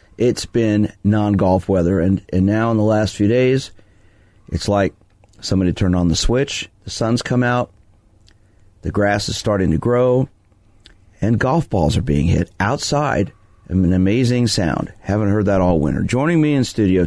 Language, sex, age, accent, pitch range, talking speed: English, male, 40-59, American, 90-110 Hz, 170 wpm